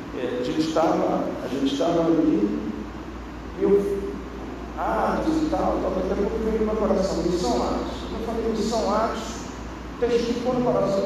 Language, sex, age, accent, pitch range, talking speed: Portuguese, male, 50-69, Brazilian, 200-285 Hz, 185 wpm